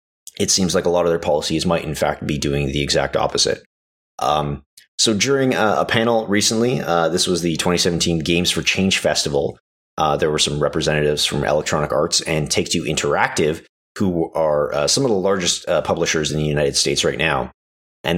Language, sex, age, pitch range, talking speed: English, male, 30-49, 70-85 Hz, 195 wpm